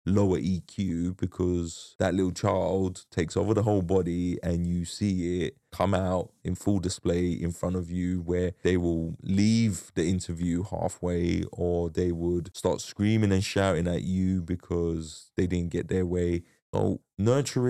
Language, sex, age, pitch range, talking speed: English, male, 20-39, 85-95 Hz, 165 wpm